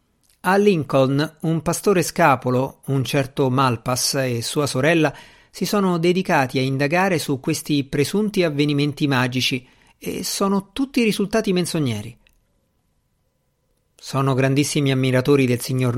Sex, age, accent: male, 50-69, native